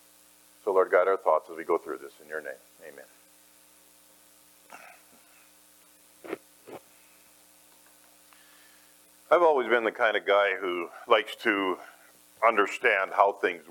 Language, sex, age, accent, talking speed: English, male, 50-69, American, 120 wpm